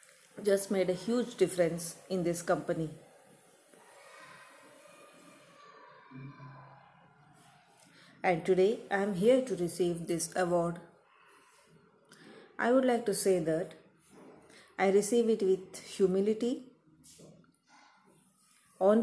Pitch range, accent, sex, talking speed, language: 170-205 Hz, native, female, 90 wpm, Kannada